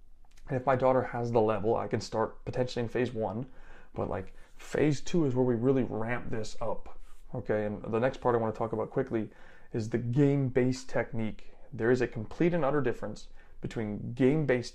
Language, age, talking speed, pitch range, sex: English, 30-49, 195 wpm, 110-135 Hz, male